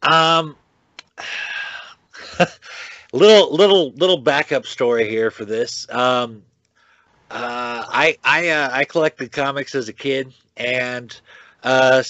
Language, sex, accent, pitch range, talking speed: English, male, American, 105-135 Hz, 110 wpm